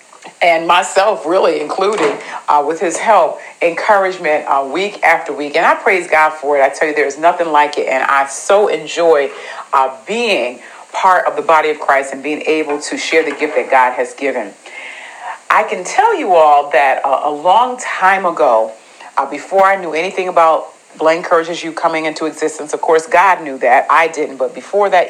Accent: American